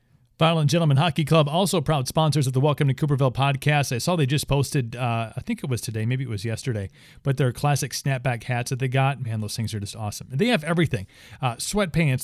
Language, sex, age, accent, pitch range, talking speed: English, male, 40-59, American, 125-155 Hz, 230 wpm